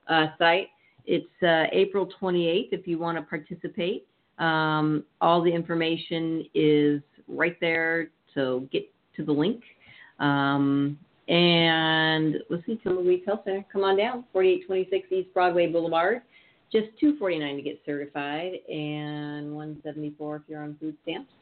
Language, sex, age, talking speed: English, female, 40-59, 160 wpm